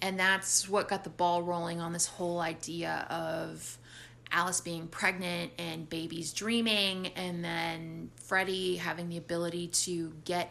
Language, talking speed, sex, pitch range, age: English, 150 wpm, female, 165-235 Hz, 20-39